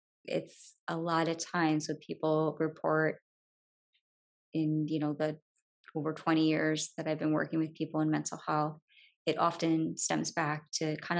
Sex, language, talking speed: female, English, 160 wpm